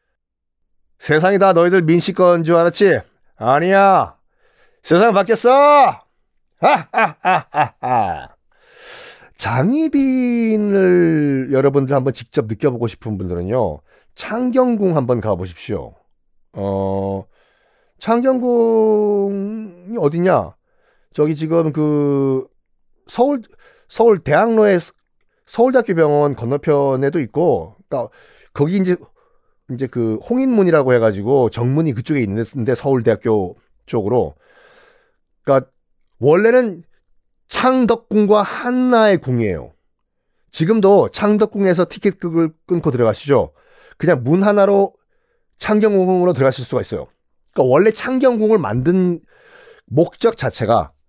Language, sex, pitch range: Korean, male, 135-230 Hz